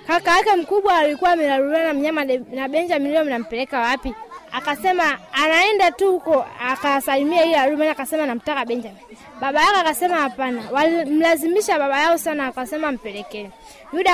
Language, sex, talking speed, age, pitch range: Swahili, female, 130 wpm, 20-39, 285-360 Hz